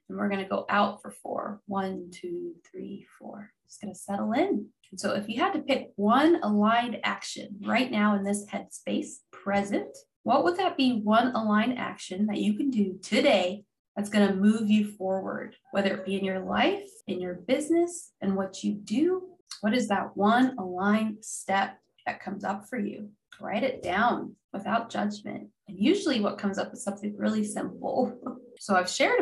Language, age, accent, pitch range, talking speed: English, 20-39, American, 195-250 Hz, 180 wpm